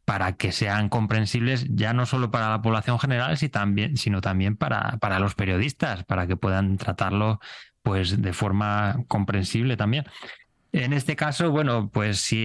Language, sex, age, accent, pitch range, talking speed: Spanish, male, 20-39, Spanish, 100-125 Hz, 150 wpm